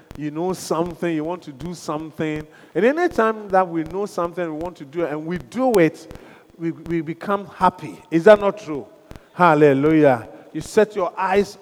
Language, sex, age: English, male, 40-59